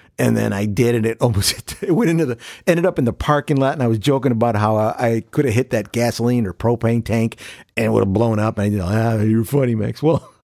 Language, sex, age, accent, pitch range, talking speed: English, male, 50-69, American, 110-185 Hz, 280 wpm